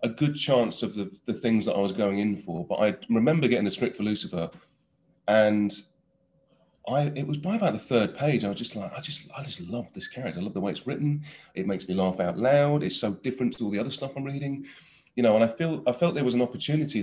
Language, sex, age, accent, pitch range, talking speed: English, male, 30-49, British, 95-125 Hz, 260 wpm